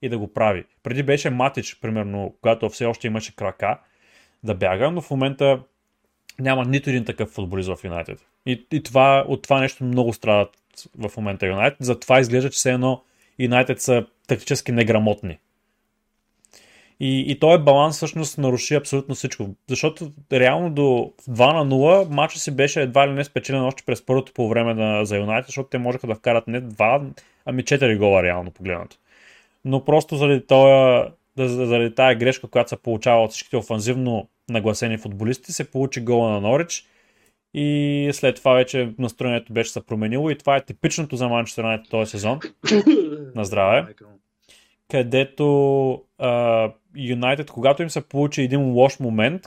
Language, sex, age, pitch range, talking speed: Bulgarian, male, 30-49, 115-140 Hz, 160 wpm